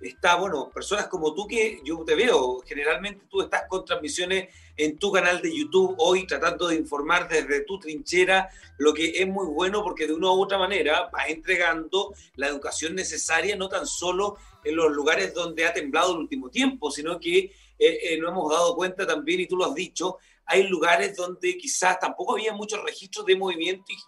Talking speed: 195 wpm